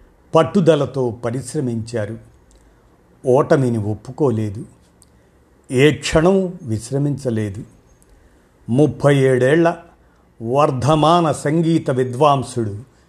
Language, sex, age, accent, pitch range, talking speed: Telugu, male, 50-69, native, 115-150 Hz, 55 wpm